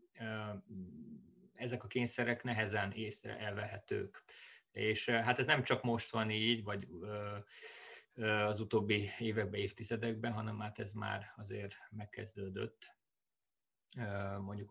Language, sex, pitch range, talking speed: Hungarian, male, 100-115 Hz, 105 wpm